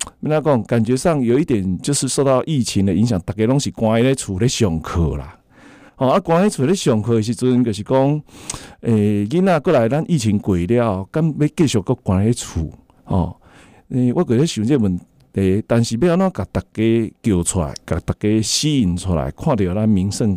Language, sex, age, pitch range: Chinese, male, 50-69, 95-130 Hz